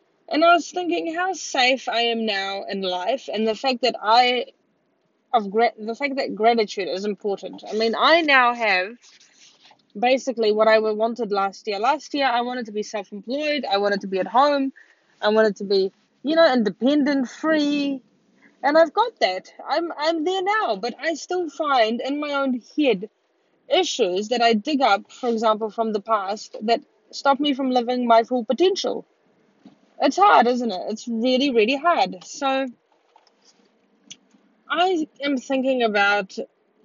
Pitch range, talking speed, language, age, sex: 215-275 Hz, 165 wpm, English, 20-39, female